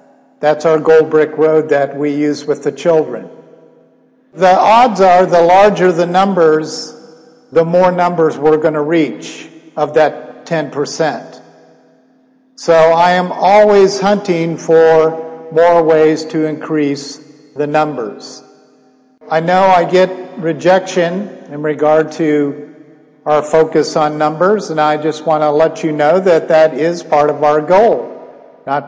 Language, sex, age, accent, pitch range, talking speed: English, male, 50-69, American, 150-175 Hz, 140 wpm